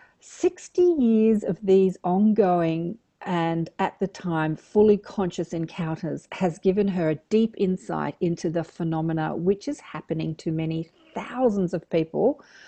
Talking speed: 135 wpm